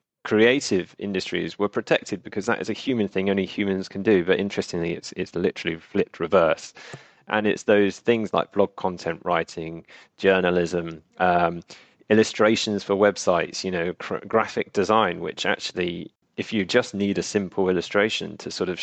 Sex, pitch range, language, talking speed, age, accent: male, 95-105 Hz, English, 165 wpm, 30-49, British